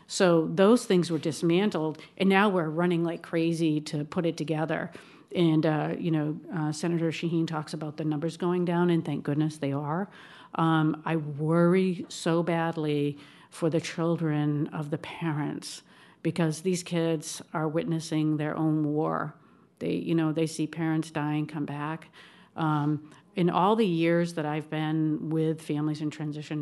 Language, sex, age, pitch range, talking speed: English, female, 50-69, 150-170 Hz, 165 wpm